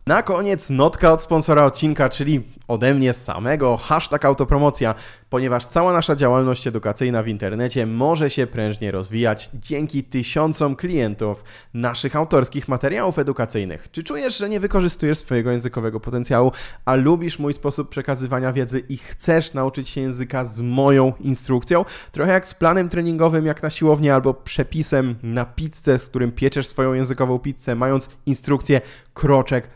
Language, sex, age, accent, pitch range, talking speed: Polish, male, 20-39, native, 120-150 Hz, 145 wpm